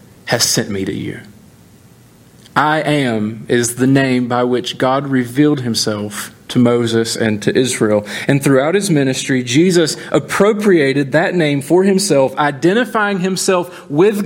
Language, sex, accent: English, male, American